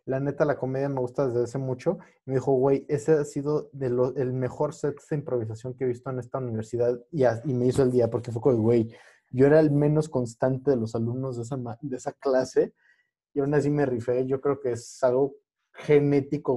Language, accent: Spanish, Mexican